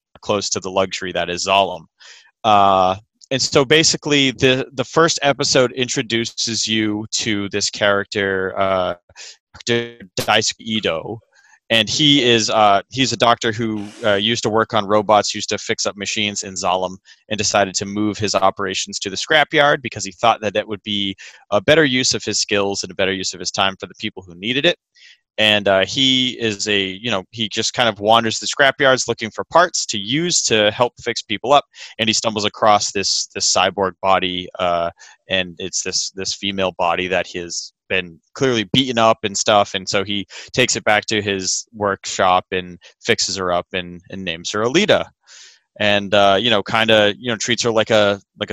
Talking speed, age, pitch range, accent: 195 wpm, 30-49, 95-120 Hz, American